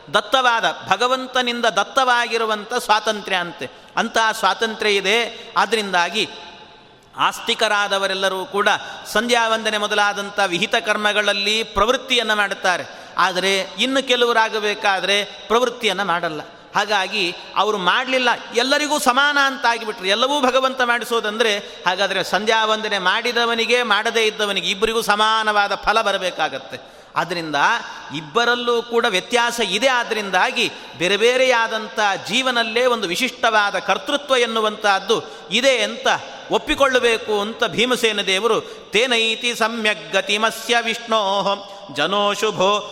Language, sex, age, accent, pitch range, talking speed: Kannada, male, 30-49, native, 200-235 Hz, 90 wpm